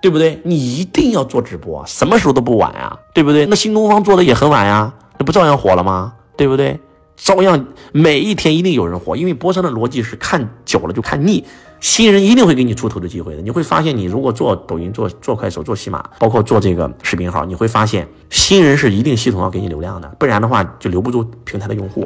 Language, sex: Chinese, male